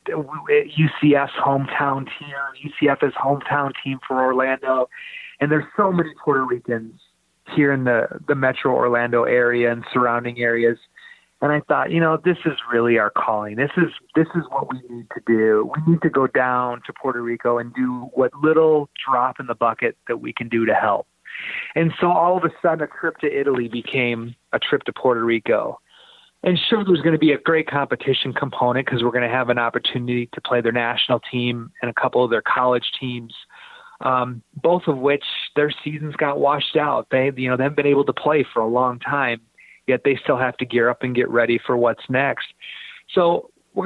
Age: 30-49